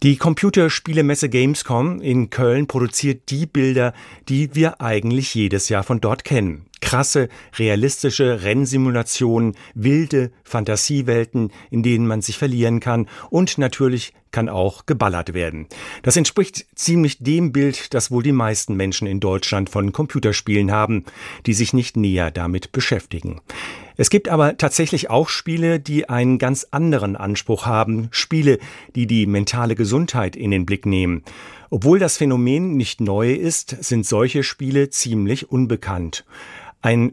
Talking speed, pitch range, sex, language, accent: 140 wpm, 110-140 Hz, male, German, German